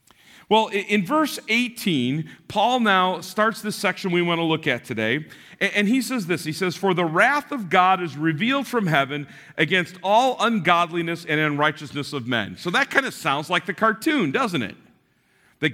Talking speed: 185 wpm